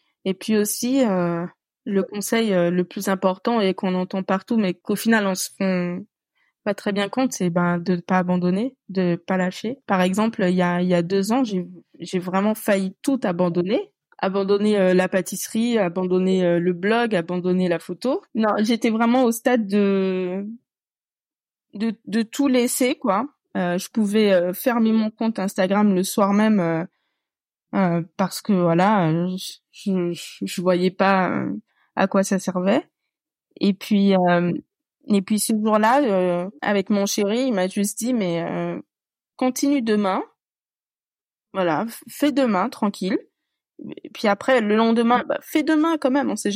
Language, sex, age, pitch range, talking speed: French, female, 20-39, 185-235 Hz, 175 wpm